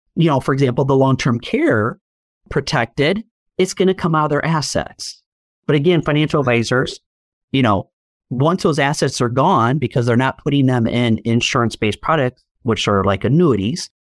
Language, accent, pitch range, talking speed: English, American, 130-175 Hz, 165 wpm